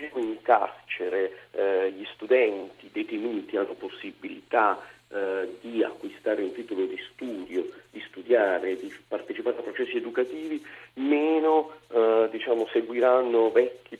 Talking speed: 110 wpm